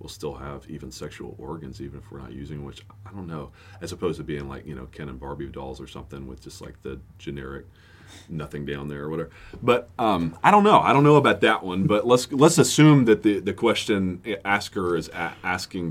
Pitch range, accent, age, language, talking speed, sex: 70-100 Hz, American, 30-49, English, 230 wpm, male